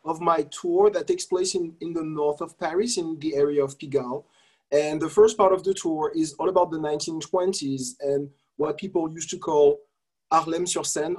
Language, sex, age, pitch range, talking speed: English, male, 30-49, 145-180 Hz, 195 wpm